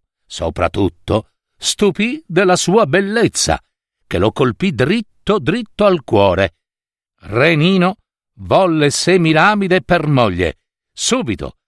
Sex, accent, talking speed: male, native, 100 wpm